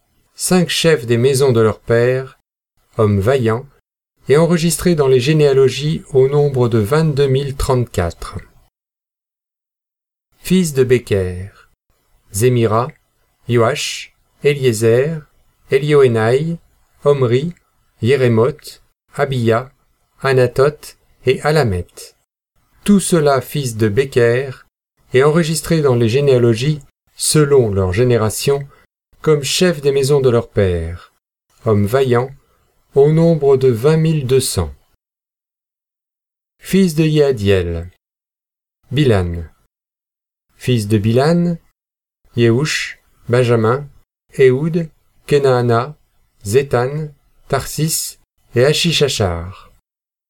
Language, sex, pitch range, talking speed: French, male, 115-150 Hz, 90 wpm